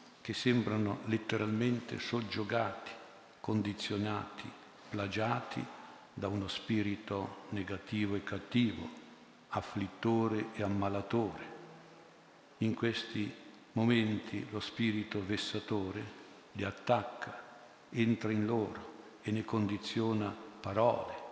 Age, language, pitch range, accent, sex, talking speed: 50-69, Italian, 100-115 Hz, native, male, 85 wpm